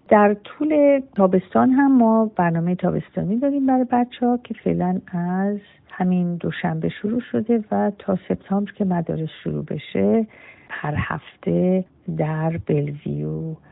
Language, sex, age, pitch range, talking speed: Persian, female, 50-69, 175-210 Hz, 125 wpm